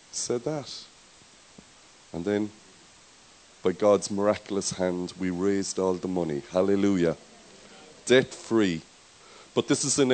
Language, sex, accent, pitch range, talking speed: English, male, Irish, 100-130 Hz, 120 wpm